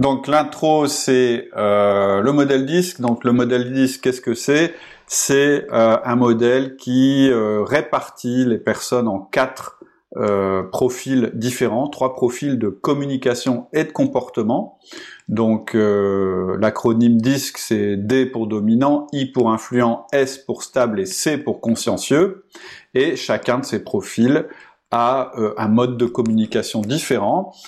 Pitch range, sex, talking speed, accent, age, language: 110-140 Hz, male, 130 wpm, French, 30-49, French